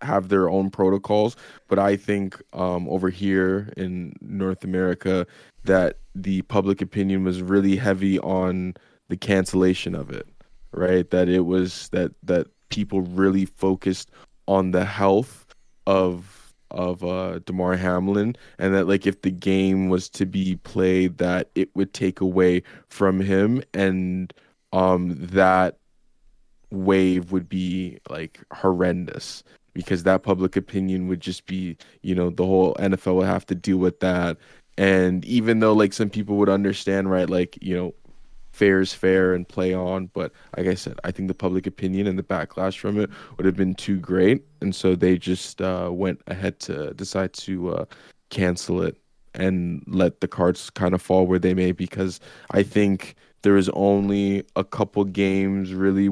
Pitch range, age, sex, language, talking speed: 90-95 Hz, 20-39, male, English, 165 wpm